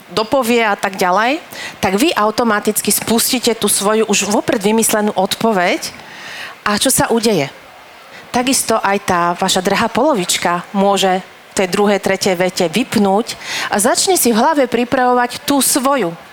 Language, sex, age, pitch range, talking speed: Slovak, female, 40-59, 200-245 Hz, 140 wpm